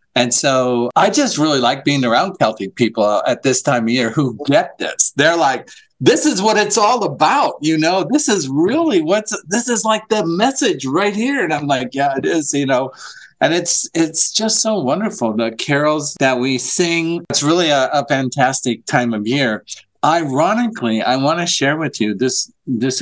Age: 50-69